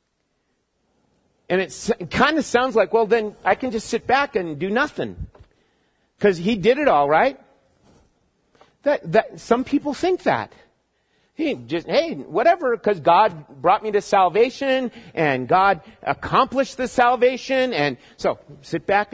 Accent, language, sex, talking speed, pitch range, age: American, English, male, 145 wpm, 165-240 Hz, 50-69